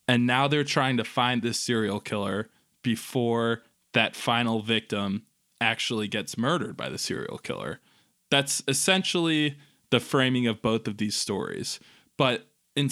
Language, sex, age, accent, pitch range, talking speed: English, male, 20-39, American, 110-140 Hz, 145 wpm